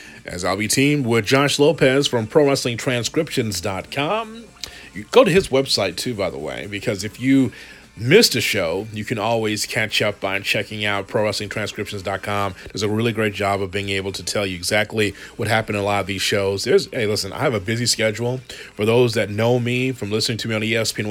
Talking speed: 205 wpm